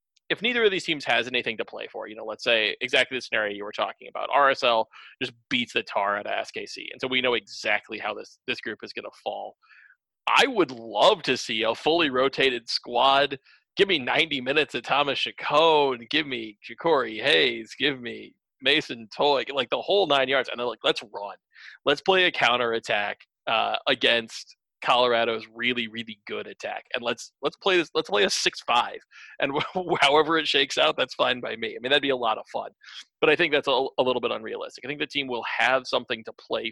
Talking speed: 215 wpm